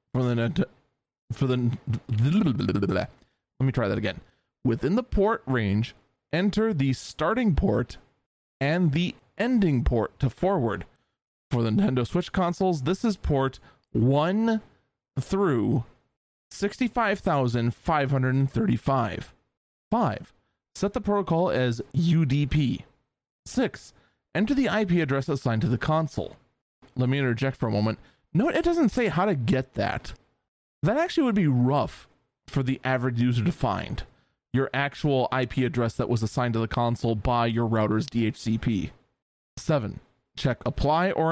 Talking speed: 135 wpm